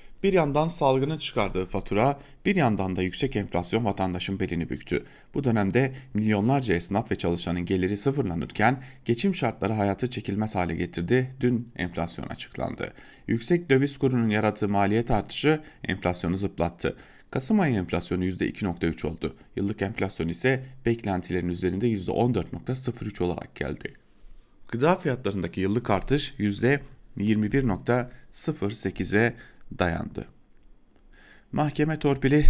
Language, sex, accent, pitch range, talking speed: German, male, Turkish, 95-135 Hz, 110 wpm